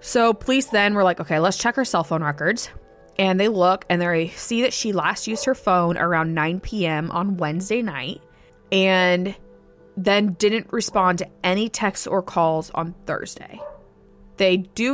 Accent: American